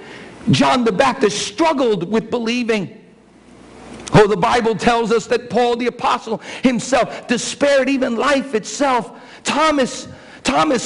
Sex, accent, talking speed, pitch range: male, American, 120 wpm, 195-285 Hz